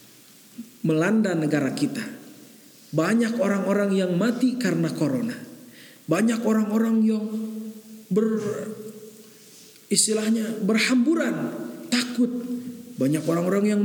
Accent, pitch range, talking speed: native, 160-225 Hz, 80 wpm